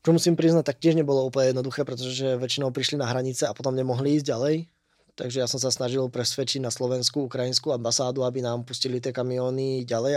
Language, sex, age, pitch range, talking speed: Czech, male, 20-39, 130-145 Hz, 205 wpm